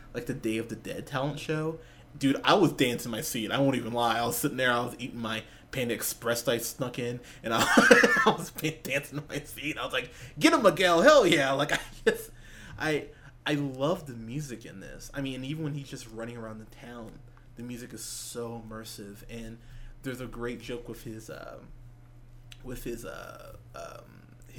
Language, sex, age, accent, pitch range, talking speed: English, male, 20-39, American, 115-140 Hz, 210 wpm